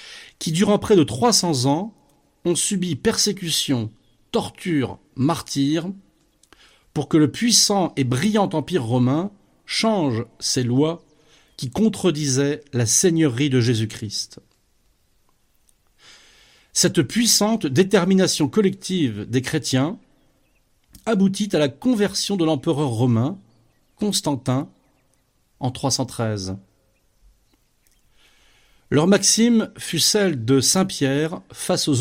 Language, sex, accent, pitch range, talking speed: French, male, French, 130-190 Hz, 95 wpm